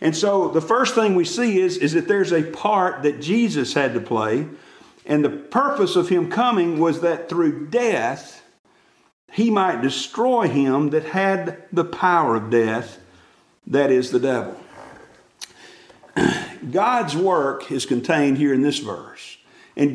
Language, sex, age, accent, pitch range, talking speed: English, male, 50-69, American, 140-195 Hz, 155 wpm